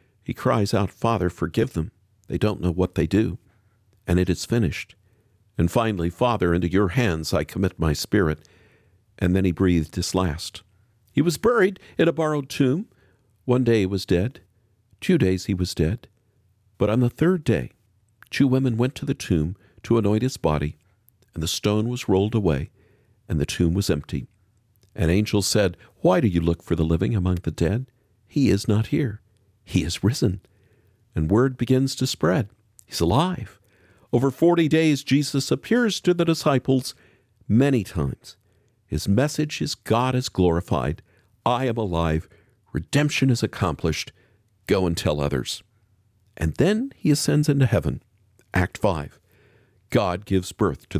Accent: American